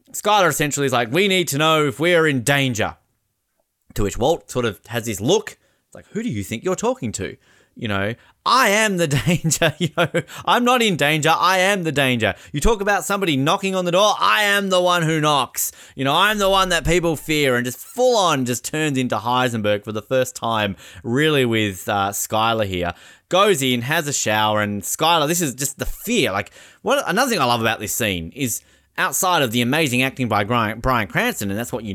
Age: 20-39